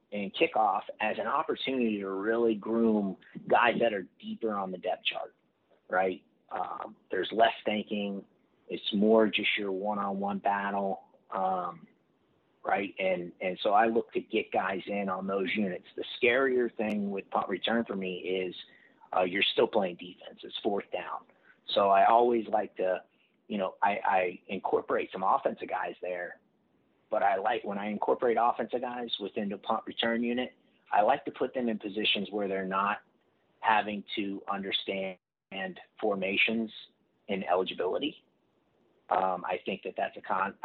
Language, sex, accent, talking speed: English, male, American, 160 wpm